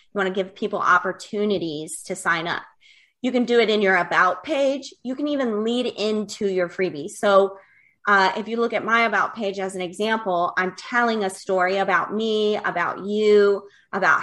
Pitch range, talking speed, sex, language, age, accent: 190-235 Hz, 190 wpm, female, English, 30-49, American